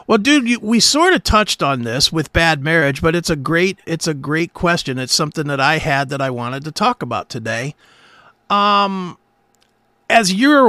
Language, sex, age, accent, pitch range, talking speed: English, male, 50-69, American, 140-195 Hz, 185 wpm